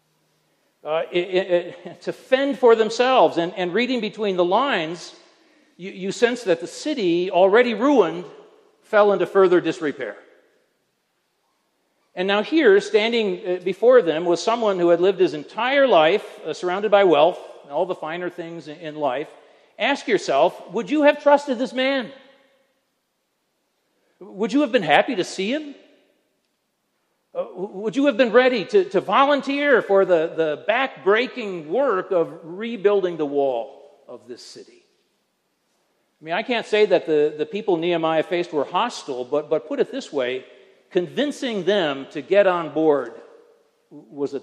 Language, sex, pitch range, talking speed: English, male, 170-275 Hz, 150 wpm